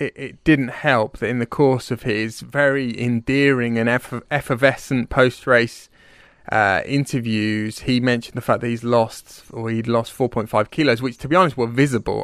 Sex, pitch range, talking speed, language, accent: male, 115-135 Hz, 175 wpm, English, British